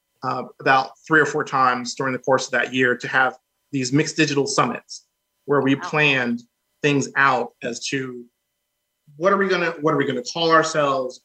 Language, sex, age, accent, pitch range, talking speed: English, male, 30-49, American, 130-150 Hz, 195 wpm